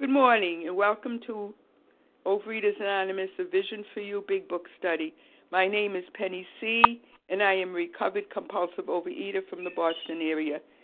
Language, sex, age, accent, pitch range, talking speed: English, female, 60-79, American, 185-230 Hz, 165 wpm